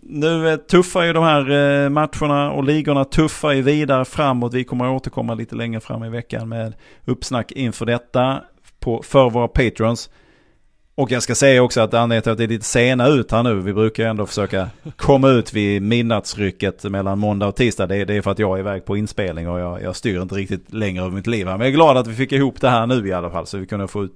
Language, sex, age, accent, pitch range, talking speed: Swedish, male, 30-49, Norwegian, 100-130 Hz, 225 wpm